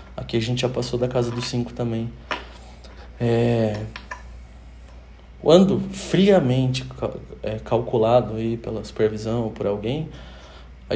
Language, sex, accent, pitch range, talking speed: Portuguese, male, Brazilian, 105-130 Hz, 125 wpm